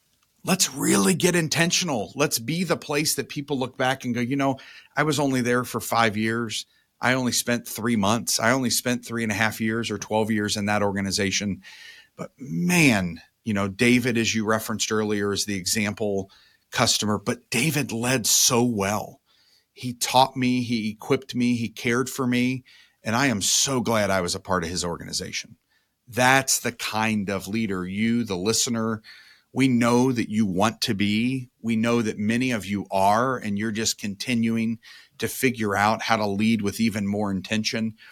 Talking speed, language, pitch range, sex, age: 185 wpm, English, 105-125 Hz, male, 40-59